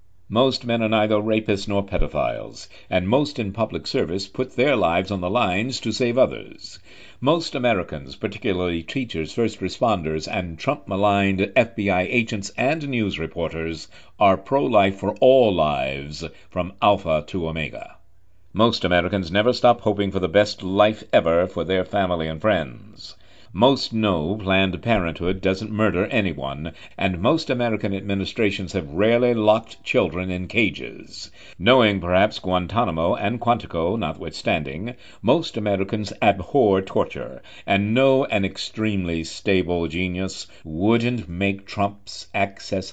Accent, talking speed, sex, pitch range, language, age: American, 135 wpm, male, 90-110 Hz, English, 60-79